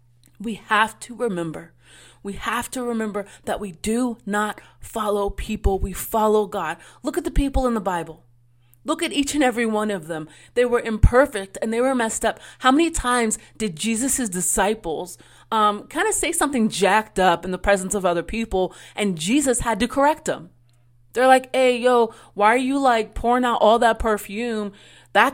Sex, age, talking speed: female, 30-49, 185 wpm